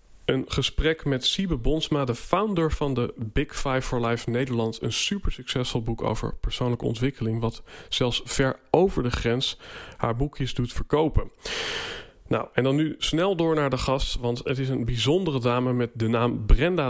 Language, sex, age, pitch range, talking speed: Dutch, male, 40-59, 120-155 Hz, 180 wpm